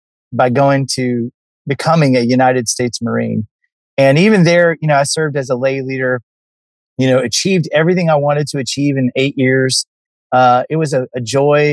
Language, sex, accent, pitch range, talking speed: English, male, American, 130-160 Hz, 185 wpm